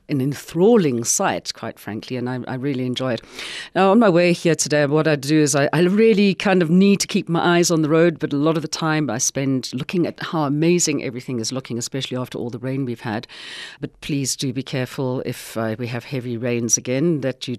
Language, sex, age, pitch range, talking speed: English, female, 40-59, 130-165 Hz, 240 wpm